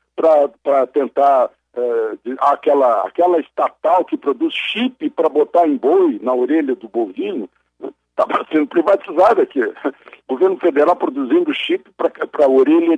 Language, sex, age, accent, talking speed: Portuguese, male, 60-79, Brazilian, 140 wpm